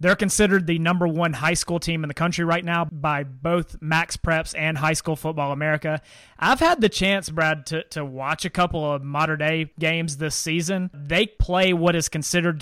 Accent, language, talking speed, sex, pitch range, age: American, English, 200 wpm, male, 150-185 Hz, 30-49